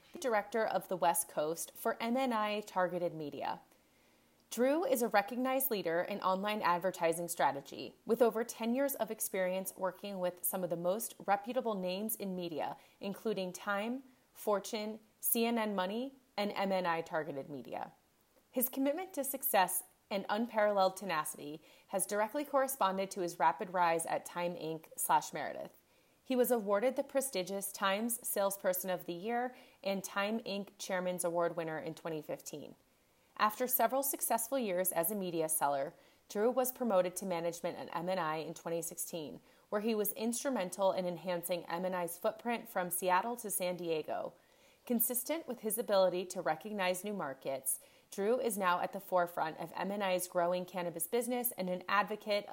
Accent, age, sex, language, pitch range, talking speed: American, 30-49, female, English, 180-230 Hz, 150 wpm